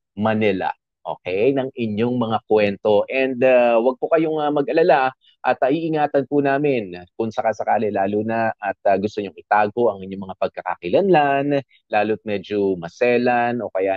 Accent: native